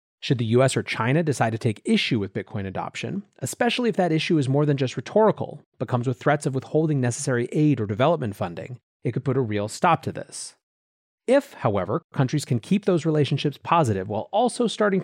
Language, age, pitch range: English, 30-49, 115-155 Hz